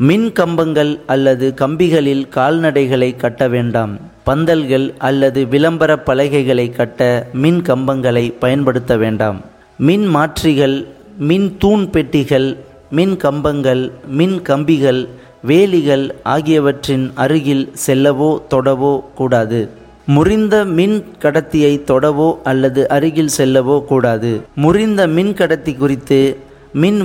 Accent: native